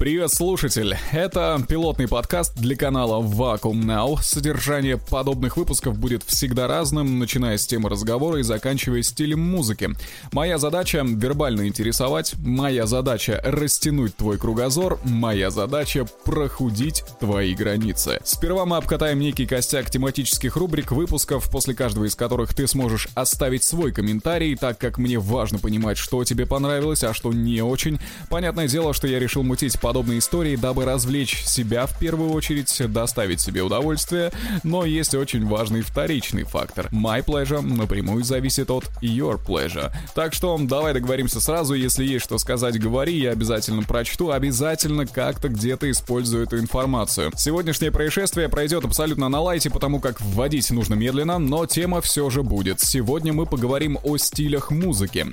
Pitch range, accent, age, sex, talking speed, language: 120-150 Hz, native, 20-39, male, 150 wpm, Russian